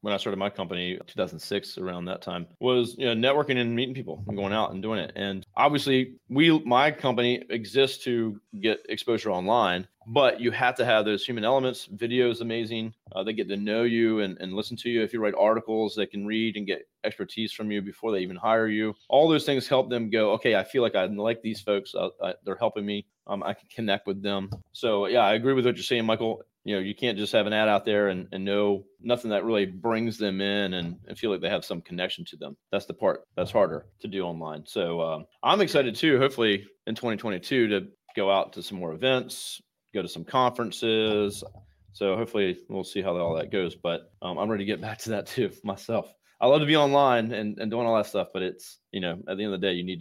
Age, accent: 30-49, American